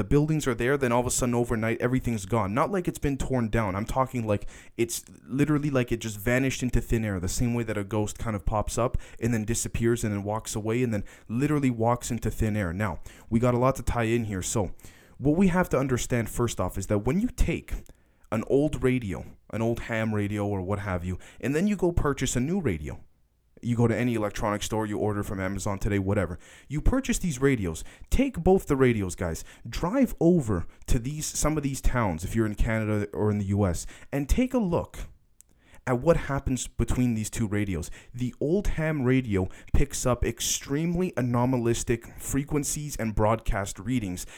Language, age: English, 20-39